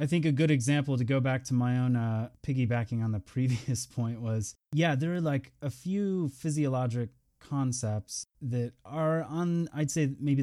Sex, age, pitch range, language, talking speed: male, 20-39, 105-130 Hz, English, 185 wpm